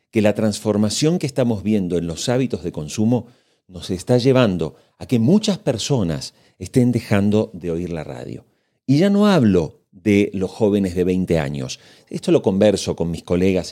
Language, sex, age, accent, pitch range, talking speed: Spanish, male, 40-59, Argentinian, 90-130 Hz, 175 wpm